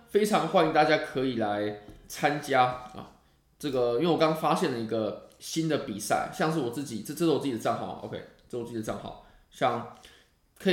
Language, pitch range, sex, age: Chinese, 115-155 Hz, male, 20-39